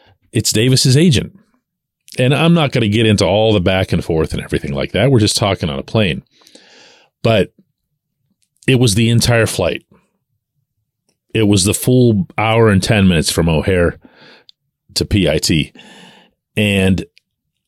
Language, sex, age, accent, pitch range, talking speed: English, male, 40-59, American, 95-130 Hz, 150 wpm